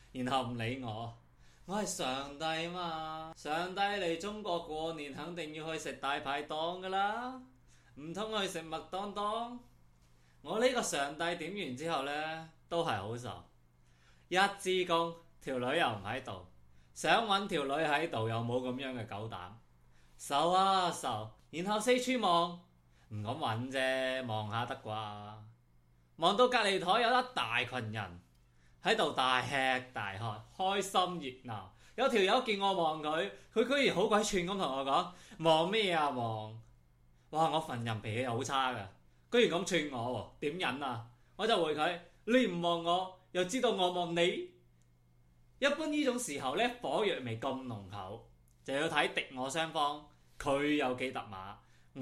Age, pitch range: 20-39, 110-180 Hz